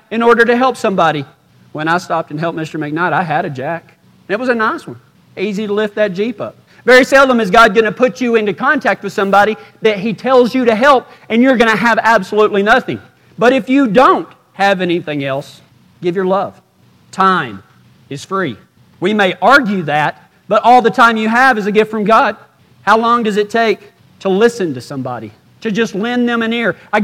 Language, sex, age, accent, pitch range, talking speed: English, male, 40-59, American, 155-230 Hz, 215 wpm